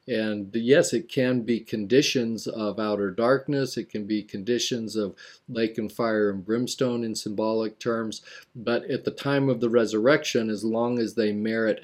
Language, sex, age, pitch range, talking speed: English, male, 40-59, 105-125 Hz, 170 wpm